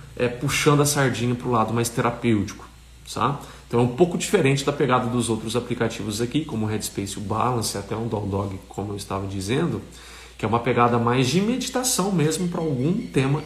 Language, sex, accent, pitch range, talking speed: Portuguese, male, Brazilian, 100-145 Hz, 200 wpm